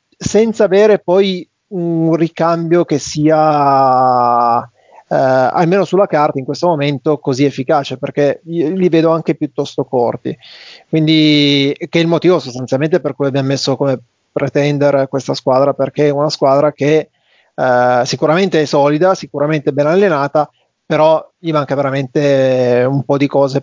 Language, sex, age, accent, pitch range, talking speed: Italian, male, 30-49, native, 140-170 Hz, 140 wpm